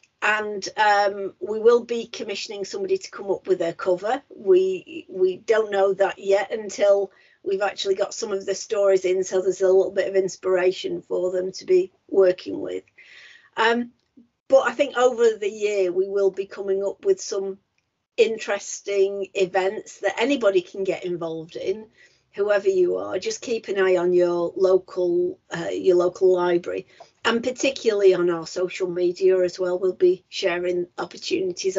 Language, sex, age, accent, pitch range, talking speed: English, female, 50-69, British, 190-275 Hz, 170 wpm